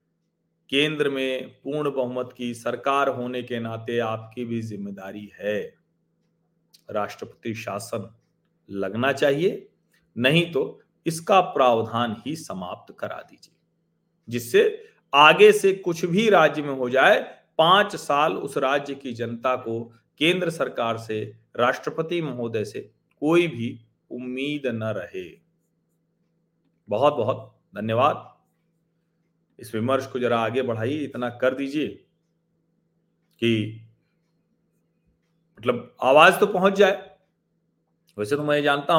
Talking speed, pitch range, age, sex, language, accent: 115 wpm, 120-165 Hz, 40-59, male, Hindi, native